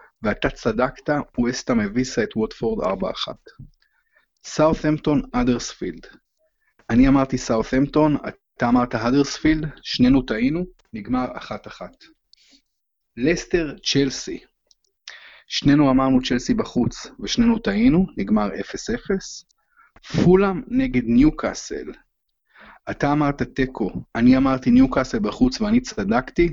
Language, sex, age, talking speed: Hebrew, male, 30-49, 95 wpm